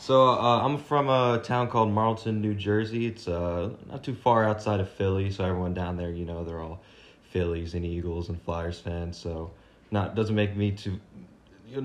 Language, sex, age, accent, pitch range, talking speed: English, male, 20-39, American, 90-110 Hz, 190 wpm